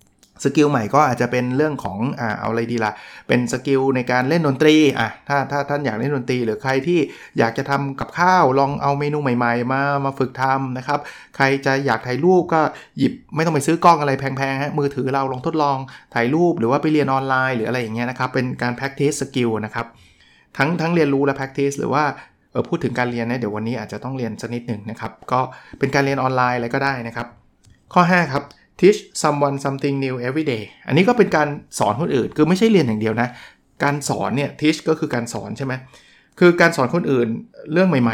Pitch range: 120-150 Hz